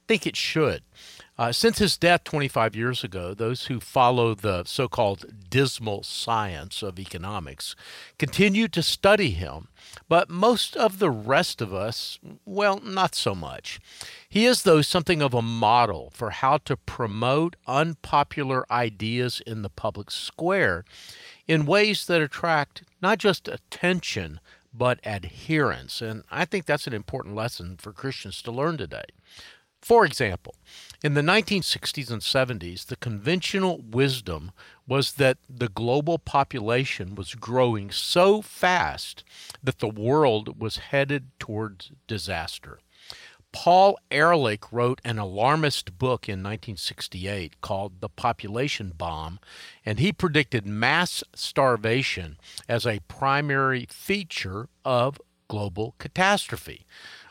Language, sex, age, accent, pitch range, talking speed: English, male, 50-69, American, 105-160 Hz, 130 wpm